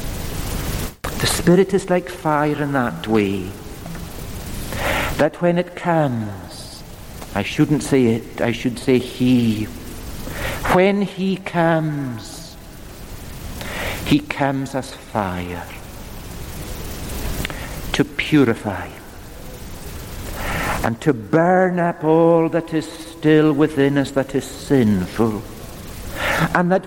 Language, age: English, 60-79